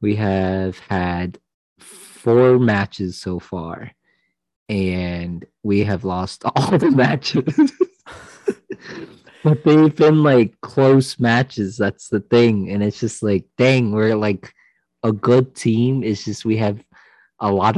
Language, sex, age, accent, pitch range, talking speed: English, male, 20-39, American, 95-120 Hz, 130 wpm